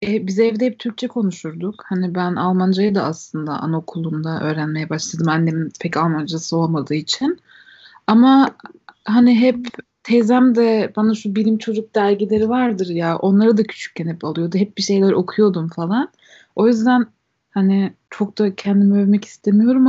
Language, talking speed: Turkish, 145 wpm